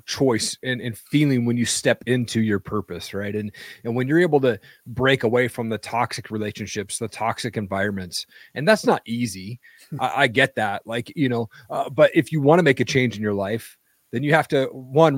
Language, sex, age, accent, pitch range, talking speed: English, male, 30-49, American, 115-140 Hz, 215 wpm